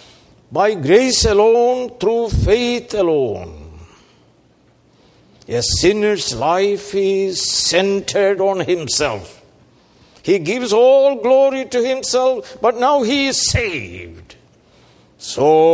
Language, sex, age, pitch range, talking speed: English, male, 60-79, 155-170 Hz, 95 wpm